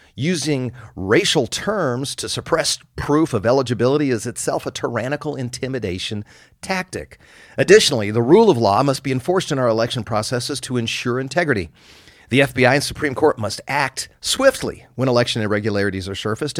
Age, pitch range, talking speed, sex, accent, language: 40-59, 100-140 Hz, 150 wpm, male, American, English